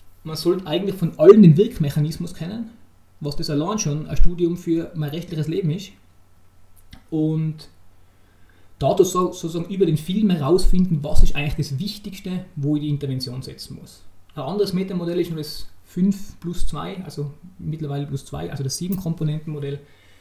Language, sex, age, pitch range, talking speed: German, male, 20-39, 140-175 Hz, 160 wpm